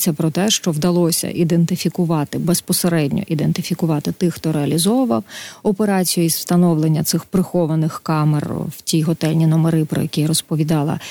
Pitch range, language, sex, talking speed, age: 160-180 Hz, Ukrainian, female, 130 wpm, 30-49